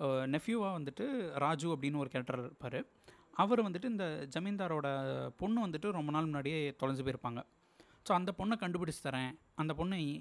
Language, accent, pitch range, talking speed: Tamil, native, 140-190 Hz, 145 wpm